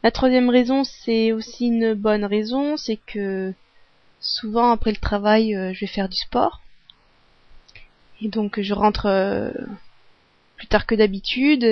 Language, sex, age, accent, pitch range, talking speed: French, female, 30-49, French, 195-250 Hz, 145 wpm